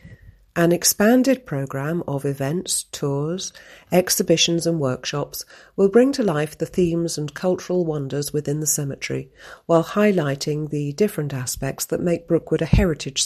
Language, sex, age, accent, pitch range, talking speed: English, female, 40-59, British, 135-170 Hz, 140 wpm